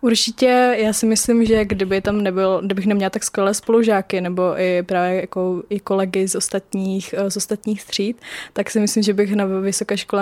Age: 20-39